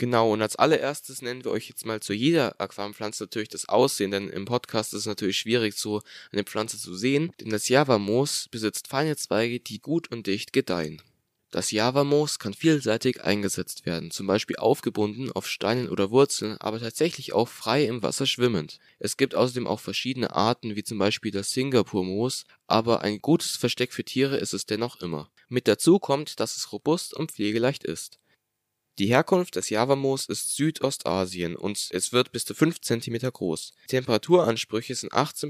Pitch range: 105-135 Hz